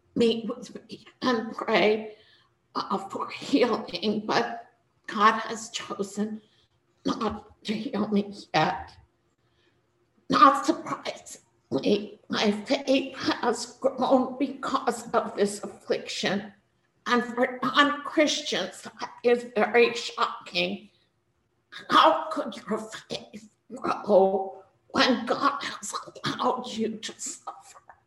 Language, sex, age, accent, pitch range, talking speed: English, female, 50-69, American, 215-265 Hz, 100 wpm